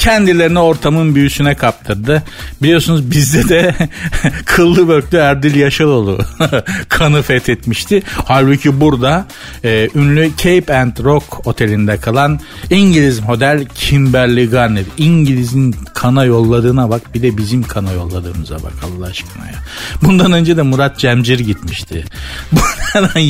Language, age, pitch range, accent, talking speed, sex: Turkish, 50-69, 120-160 Hz, native, 120 wpm, male